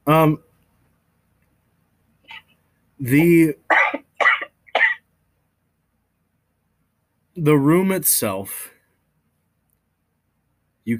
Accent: American